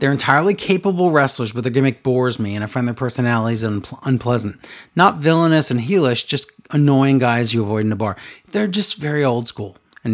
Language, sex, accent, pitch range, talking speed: English, male, American, 120-170 Hz, 205 wpm